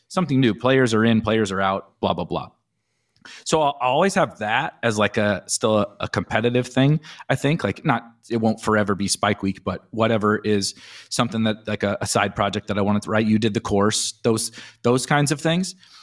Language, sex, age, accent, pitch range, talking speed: English, male, 30-49, American, 110-130 Hz, 220 wpm